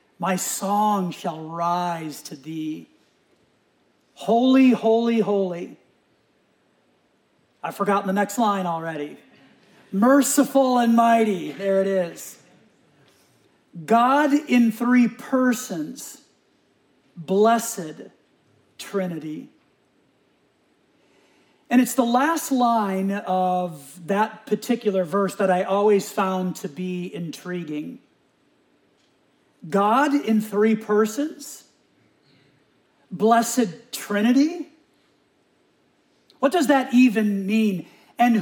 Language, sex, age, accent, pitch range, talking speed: English, male, 40-59, American, 185-235 Hz, 85 wpm